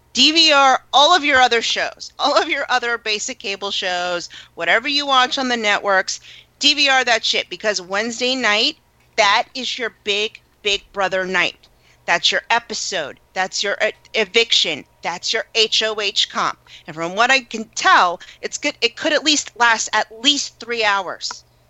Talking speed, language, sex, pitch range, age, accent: 165 wpm, English, female, 185-240 Hz, 40-59, American